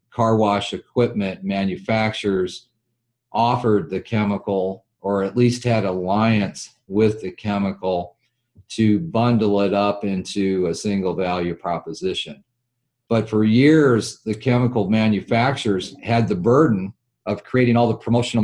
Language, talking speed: English, 125 wpm